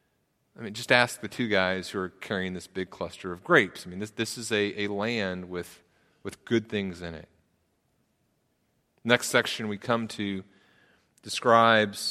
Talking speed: 175 wpm